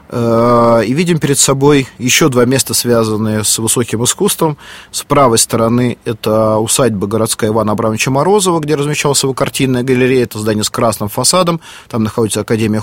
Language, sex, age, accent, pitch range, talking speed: Russian, male, 30-49, native, 115-145 Hz, 155 wpm